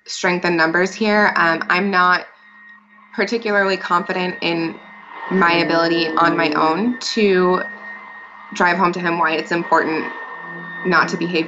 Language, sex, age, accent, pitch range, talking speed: English, female, 20-39, American, 165-200 Hz, 135 wpm